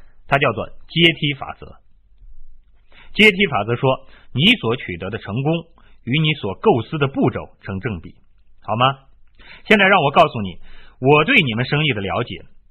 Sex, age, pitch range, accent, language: male, 30-49, 100-160 Hz, native, Chinese